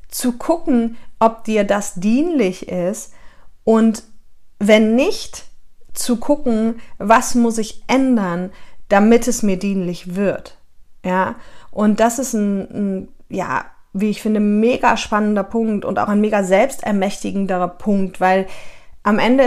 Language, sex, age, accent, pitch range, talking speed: German, female, 30-49, German, 190-230 Hz, 135 wpm